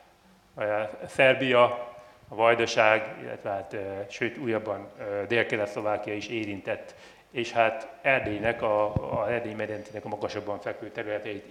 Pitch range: 105-125 Hz